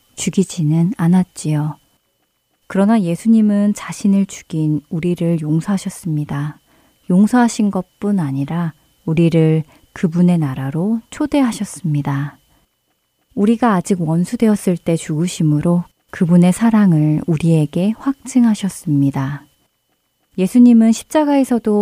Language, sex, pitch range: Korean, female, 155-210 Hz